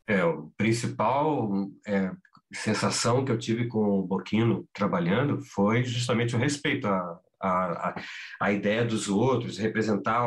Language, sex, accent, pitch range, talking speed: English, male, Brazilian, 100-125 Hz, 125 wpm